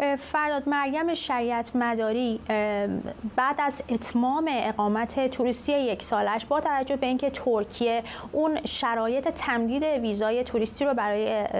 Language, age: Persian, 30-49